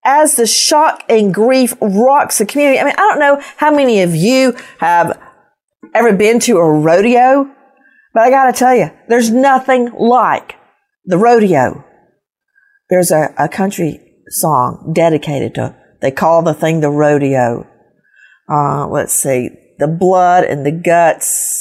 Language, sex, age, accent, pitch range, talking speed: English, female, 50-69, American, 170-265 Hz, 155 wpm